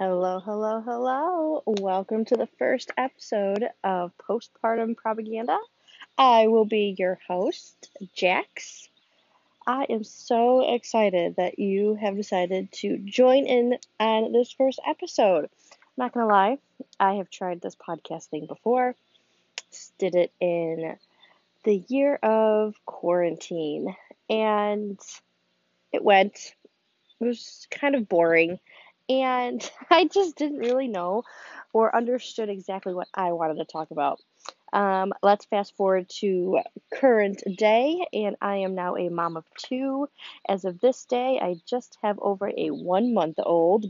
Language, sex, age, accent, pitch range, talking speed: English, female, 20-39, American, 185-250 Hz, 135 wpm